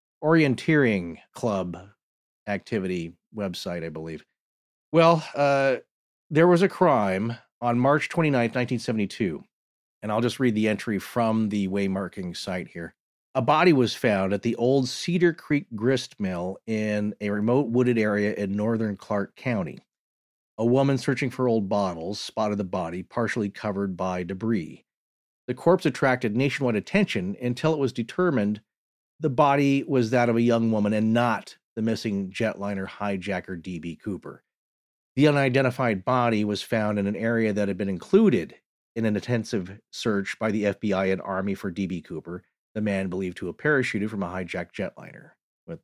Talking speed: 155 wpm